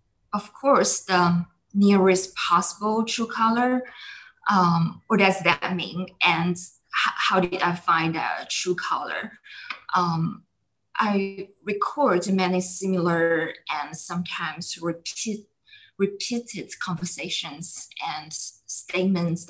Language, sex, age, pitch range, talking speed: English, female, 20-39, 175-205 Hz, 95 wpm